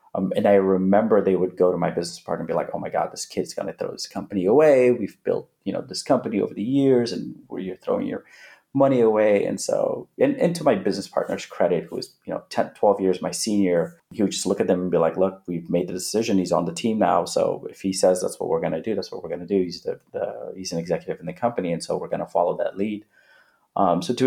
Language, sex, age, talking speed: English, male, 30-49, 280 wpm